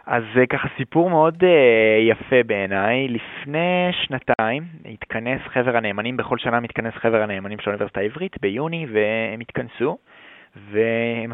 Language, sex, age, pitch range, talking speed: Hebrew, male, 20-39, 105-130 Hz, 120 wpm